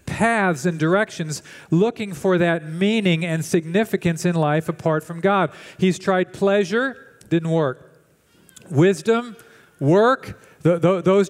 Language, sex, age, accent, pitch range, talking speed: English, male, 50-69, American, 155-200 Hz, 115 wpm